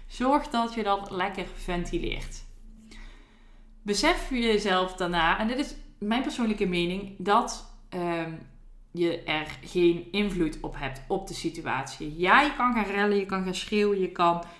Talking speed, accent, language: 150 wpm, Dutch, Dutch